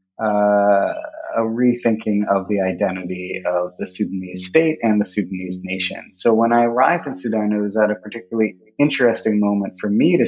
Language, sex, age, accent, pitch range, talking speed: English, male, 30-49, American, 95-115 Hz, 175 wpm